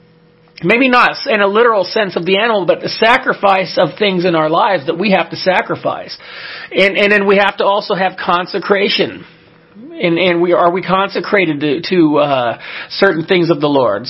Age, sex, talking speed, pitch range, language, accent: 40-59, male, 190 wpm, 160-195 Hz, English, American